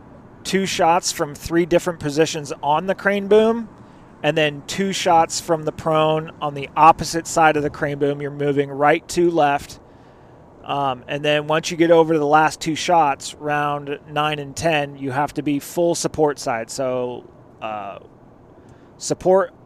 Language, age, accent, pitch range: English, 30-49, American, 140-165 Hz